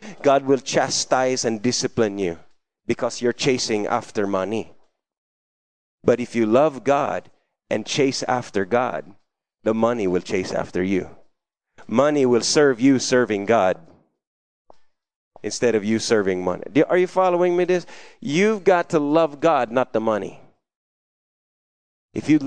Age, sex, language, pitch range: 30-49, male, English, 120-150 Hz